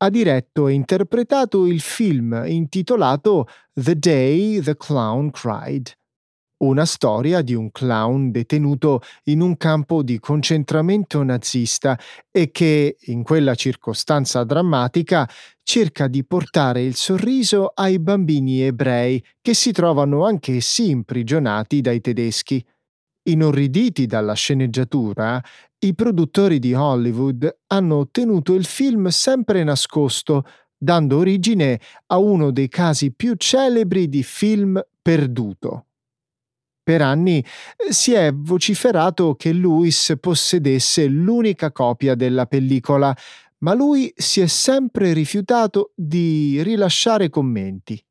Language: Italian